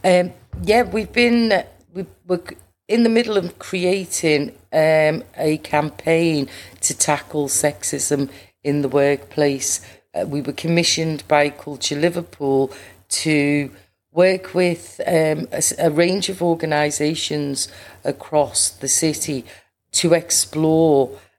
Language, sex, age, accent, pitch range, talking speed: English, female, 40-59, British, 140-170 Hz, 120 wpm